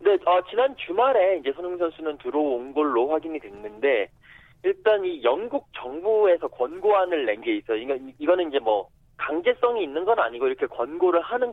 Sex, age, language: male, 40-59, Korean